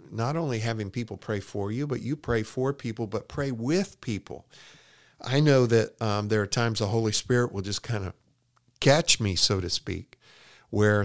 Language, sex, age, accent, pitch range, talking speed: English, male, 50-69, American, 95-125 Hz, 195 wpm